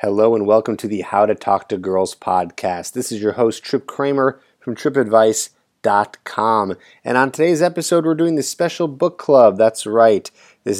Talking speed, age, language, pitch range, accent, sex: 180 wpm, 30-49, English, 95-115 Hz, American, male